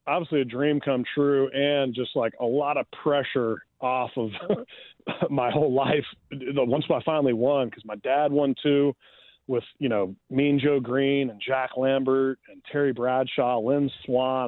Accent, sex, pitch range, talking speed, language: American, male, 125-140 Hz, 165 wpm, English